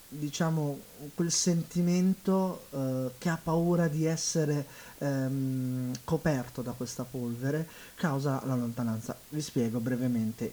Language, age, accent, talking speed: Italian, 30-49, native, 115 wpm